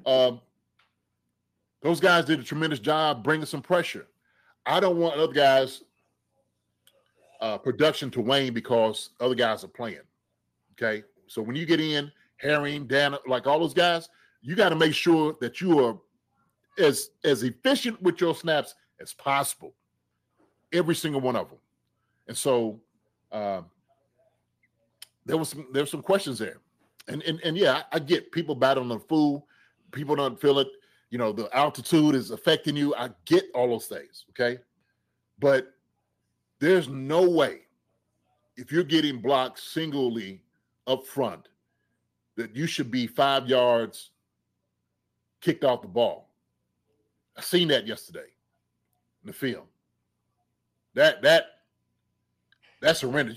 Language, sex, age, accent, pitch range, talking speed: English, male, 30-49, American, 125-170 Hz, 145 wpm